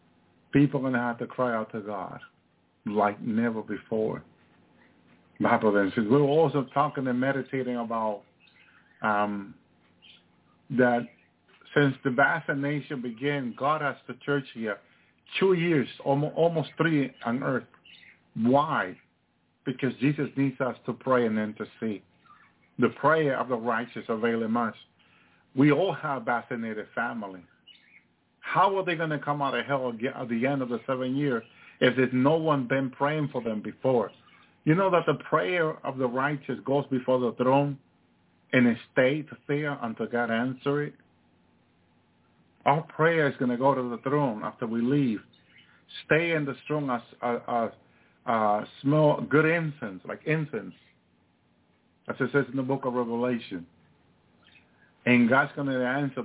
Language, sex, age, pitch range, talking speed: English, male, 50-69, 110-140 Hz, 150 wpm